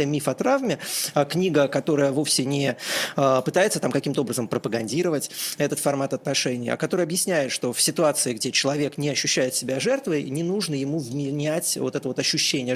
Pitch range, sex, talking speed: 135-155 Hz, male, 160 wpm